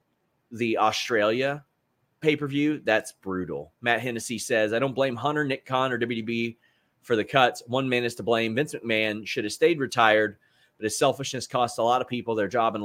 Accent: American